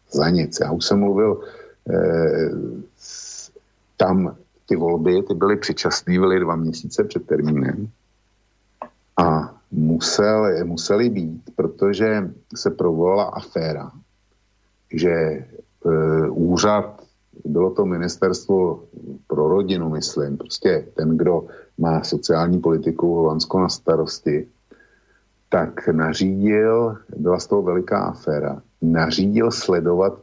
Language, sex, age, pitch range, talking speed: Slovak, male, 50-69, 80-100 Hz, 105 wpm